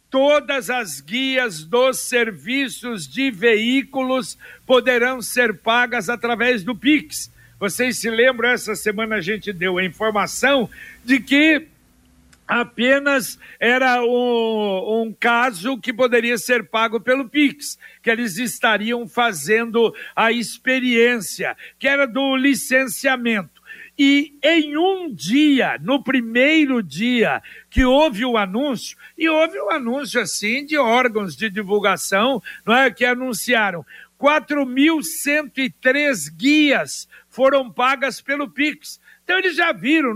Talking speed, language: 115 wpm, Portuguese